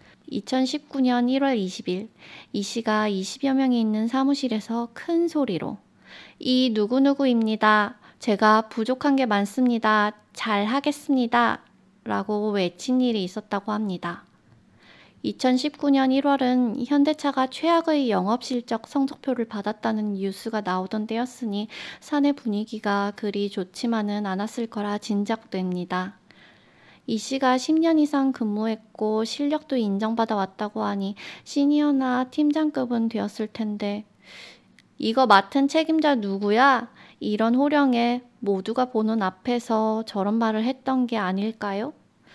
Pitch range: 210-265 Hz